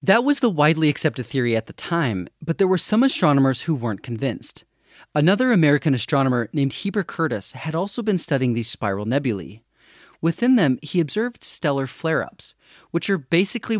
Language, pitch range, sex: English, 125-185 Hz, male